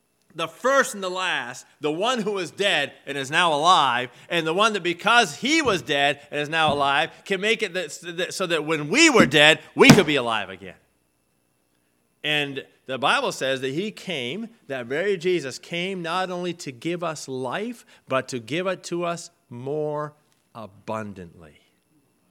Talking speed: 175 wpm